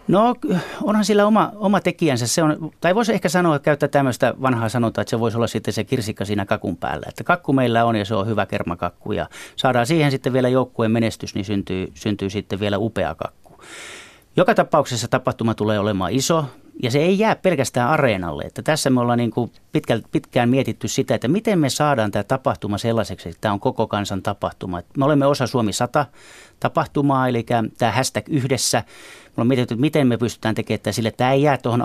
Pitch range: 105-140 Hz